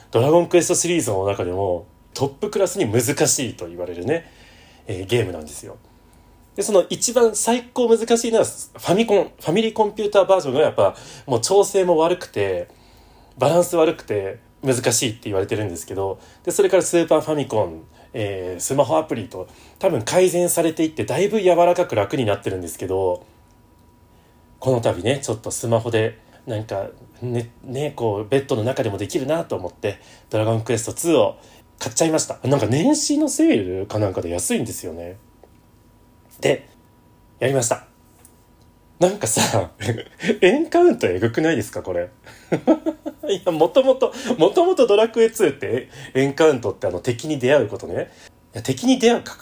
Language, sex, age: Japanese, male, 30-49